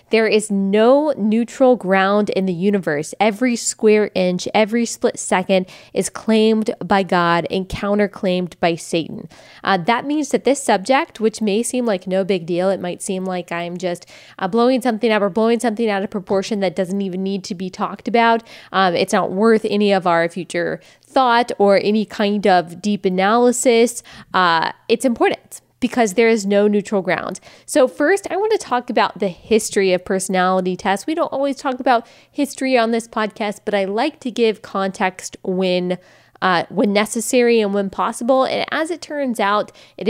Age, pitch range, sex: 20-39, 195-245 Hz, female